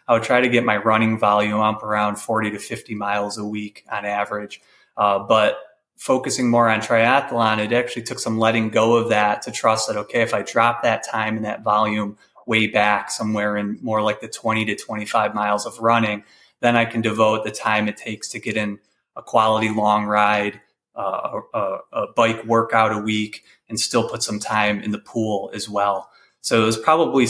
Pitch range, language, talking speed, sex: 105-115 Hz, English, 205 wpm, male